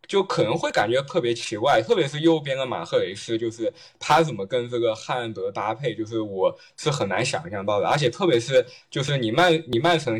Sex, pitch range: male, 145-180 Hz